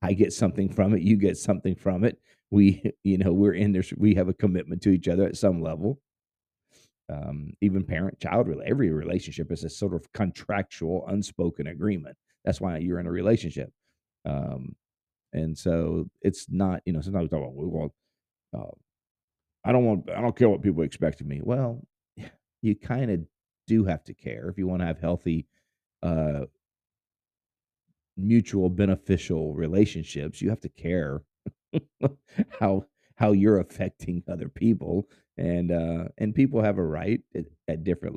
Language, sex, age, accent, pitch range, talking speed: English, male, 40-59, American, 85-105 Hz, 170 wpm